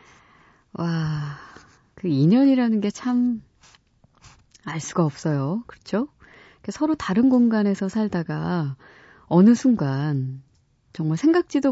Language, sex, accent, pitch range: Korean, female, native, 145-205 Hz